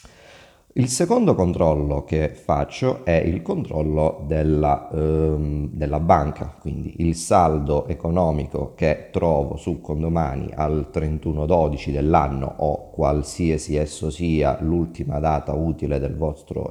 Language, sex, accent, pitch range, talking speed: Italian, male, native, 75-85 Hz, 115 wpm